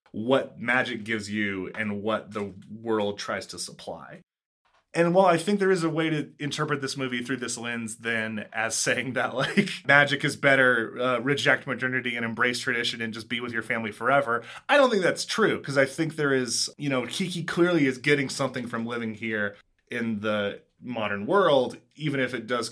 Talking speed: 200 wpm